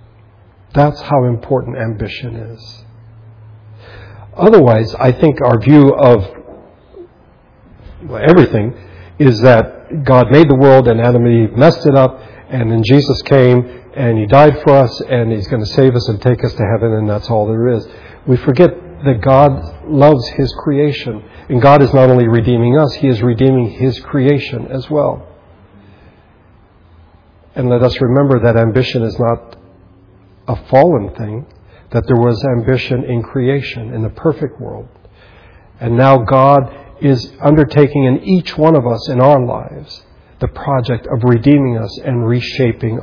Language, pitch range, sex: English, 110-135 Hz, male